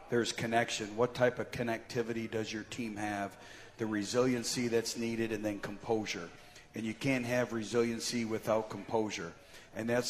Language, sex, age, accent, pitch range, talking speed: English, male, 40-59, American, 110-120 Hz, 155 wpm